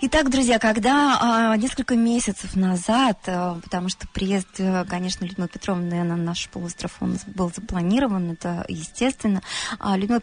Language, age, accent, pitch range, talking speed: Russian, 20-39, native, 185-225 Hz, 140 wpm